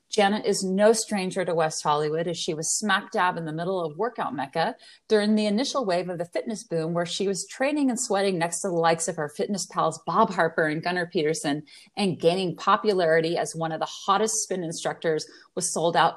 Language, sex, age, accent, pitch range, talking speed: English, female, 30-49, American, 165-210 Hz, 215 wpm